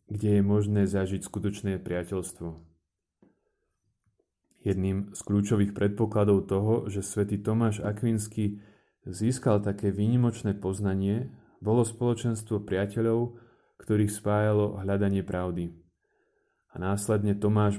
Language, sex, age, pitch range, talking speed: Slovak, male, 30-49, 95-105 Hz, 100 wpm